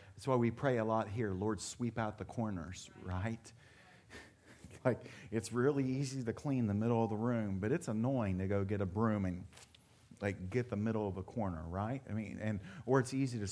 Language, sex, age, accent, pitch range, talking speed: English, male, 40-59, American, 100-125 Hz, 220 wpm